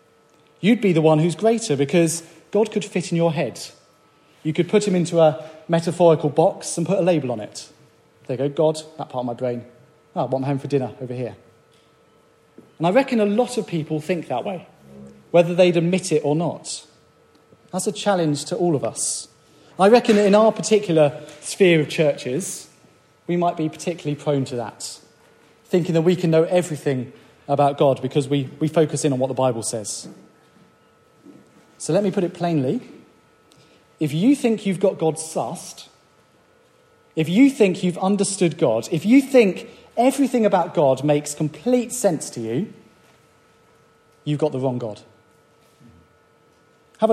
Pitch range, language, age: 140-185 Hz, English, 30-49